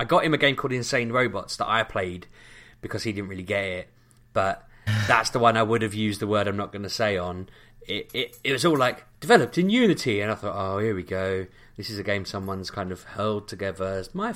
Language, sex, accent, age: English, male, British, 20-39